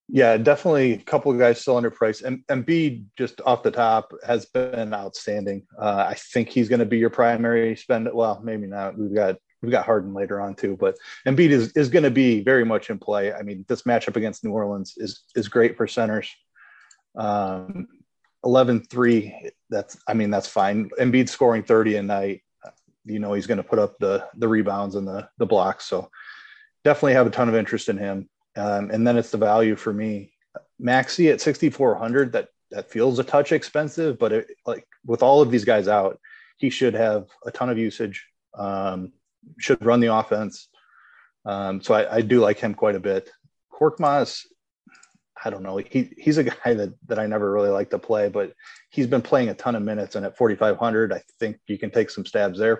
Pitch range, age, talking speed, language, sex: 105-145 Hz, 30-49, 205 wpm, English, male